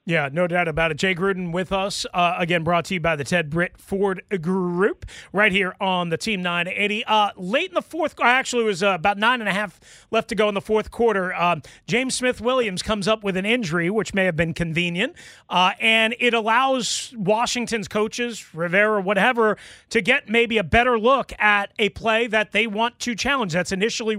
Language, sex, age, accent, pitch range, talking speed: English, male, 30-49, American, 195-250 Hz, 205 wpm